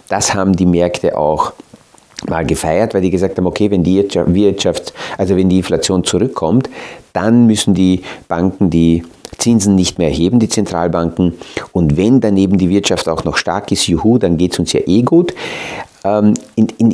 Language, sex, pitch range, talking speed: German, male, 85-105 Hz, 175 wpm